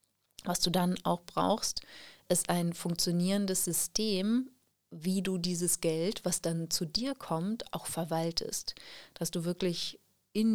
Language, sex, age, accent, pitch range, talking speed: German, female, 30-49, German, 165-190 Hz, 135 wpm